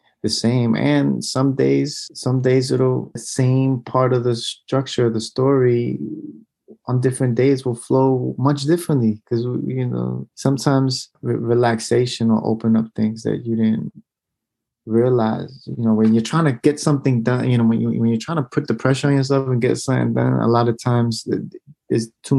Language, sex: English, male